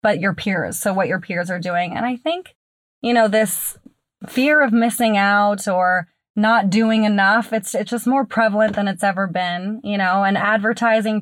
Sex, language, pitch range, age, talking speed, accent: female, English, 175-215 Hz, 20-39, 195 wpm, American